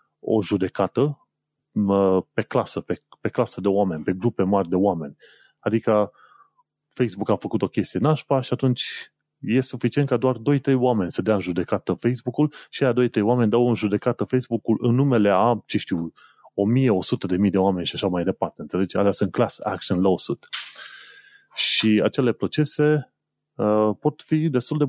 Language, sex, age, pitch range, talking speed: Romanian, male, 30-49, 100-130 Hz, 175 wpm